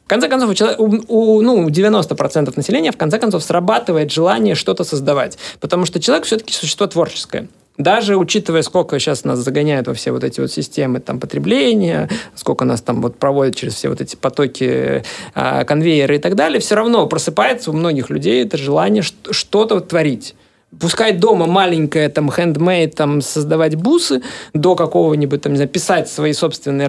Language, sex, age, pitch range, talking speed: Russian, male, 20-39, 145-195 Hz, 155 wpm